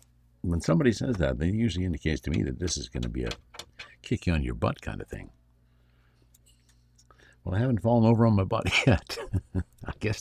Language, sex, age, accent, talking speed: English, male, 60-79, American, 190 wpm